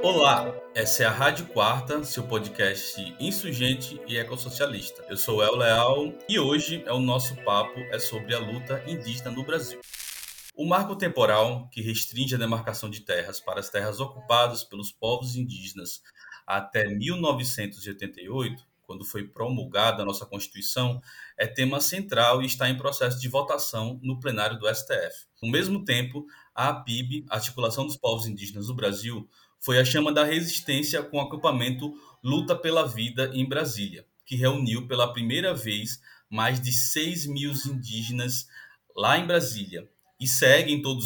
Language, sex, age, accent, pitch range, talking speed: Portuguese, male, 20-39, Brazilian, 115-140 Hz, 155 wpm